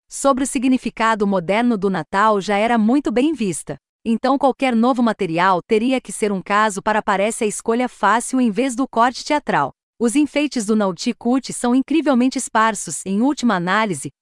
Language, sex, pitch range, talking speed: Portuguese, female, 210-265 Hz, 170 wpm